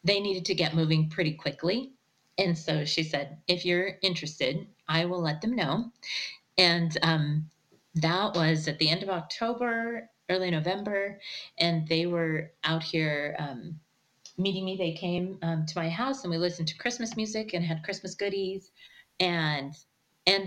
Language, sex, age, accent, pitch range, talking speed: English, female, 30-49, American, 160-190 Hz, 165 wpm